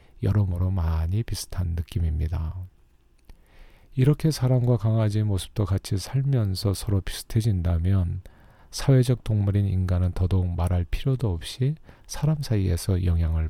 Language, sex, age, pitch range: Korean, male, 40-59, 90-110 Hz